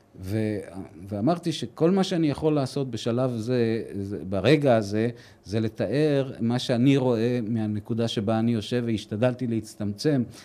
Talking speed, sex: 130 wpm, male